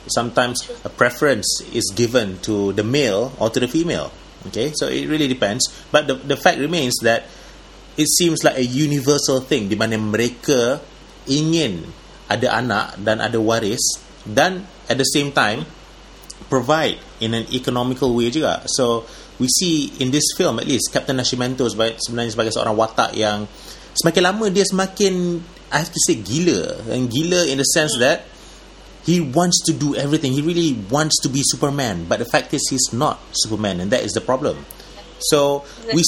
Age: 30-49